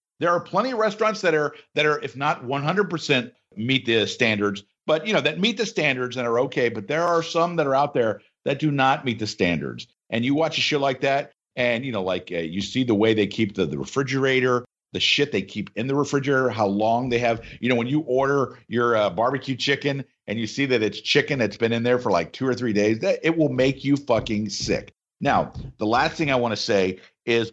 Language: English